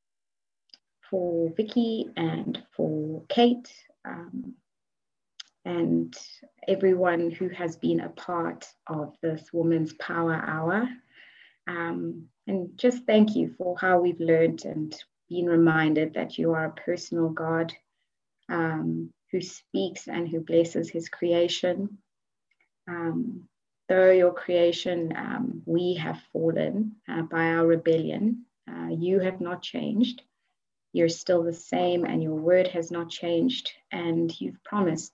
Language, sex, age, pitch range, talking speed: English, female, 30-49, 165-195 Hz, 125 wpm